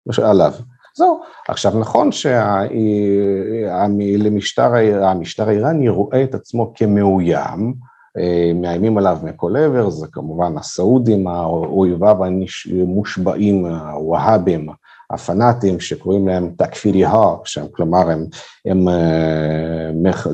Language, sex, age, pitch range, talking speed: Hebrew, male, 50-69, 90-110 Hz, 90 wpm